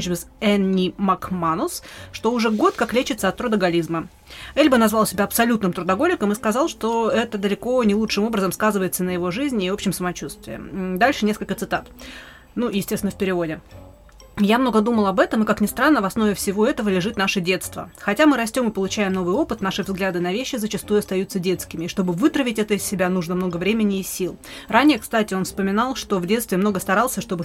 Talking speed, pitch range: 190 wpm, 185-225 Hz